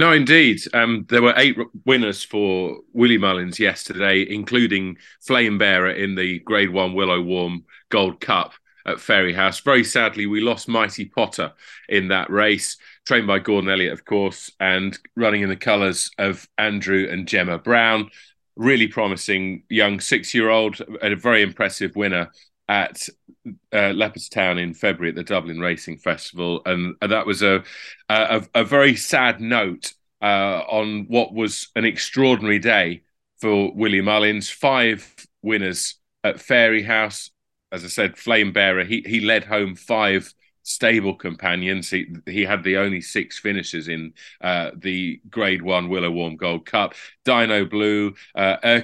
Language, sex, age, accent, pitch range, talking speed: English, male, 30-49, British, 90-110 Hz, 150 wpm